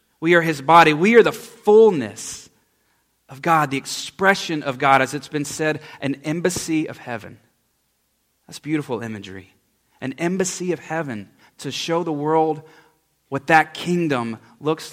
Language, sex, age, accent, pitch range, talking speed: English, male, 30-49, American, 140-175 Hz, 150 wpm